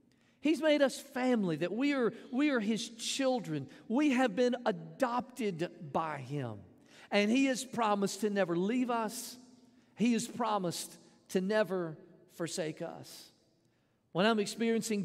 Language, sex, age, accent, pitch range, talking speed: English, male, 50-69, American, 175-225 Hz, 135 wpm